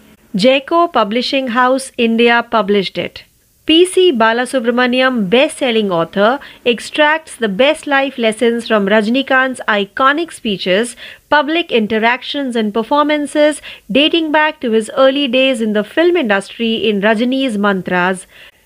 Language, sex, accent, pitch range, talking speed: Marathi, female, native, 220-280 Hz, 120 wpm